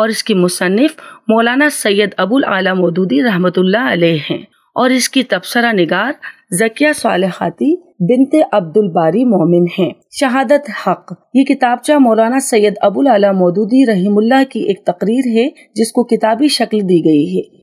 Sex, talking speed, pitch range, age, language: female, 145 wpm, 195-260 Hz, 30-49, Urdu